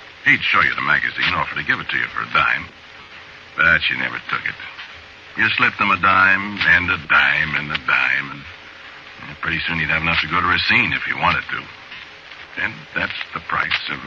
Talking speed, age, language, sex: 215 wpm, 60-79, English, male